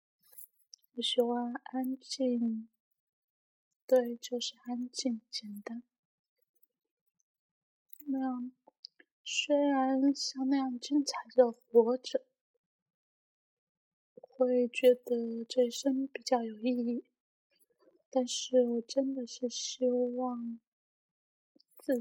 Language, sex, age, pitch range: Chinese, female, 20-39, 240-265 Hz